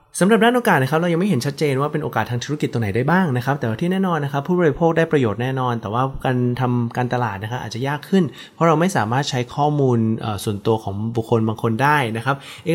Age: 20-39